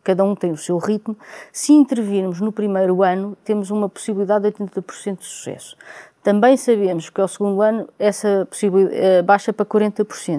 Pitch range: 180-220 Hz